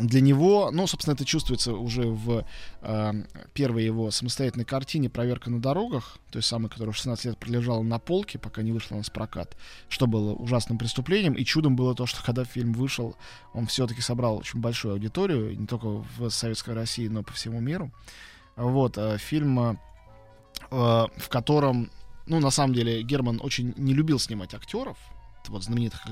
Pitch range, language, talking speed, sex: 110-135 Hz, Russian, 175 wpm, male